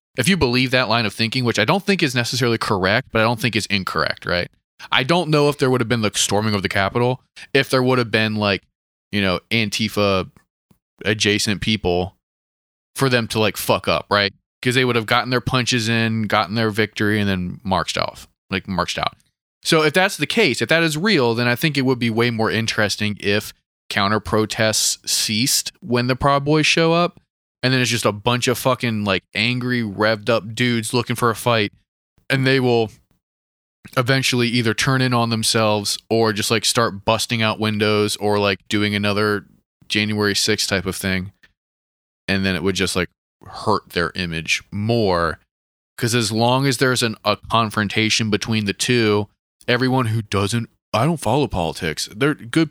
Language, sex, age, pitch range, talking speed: English, male, 20-39, 105-125 Hz, 190 wpm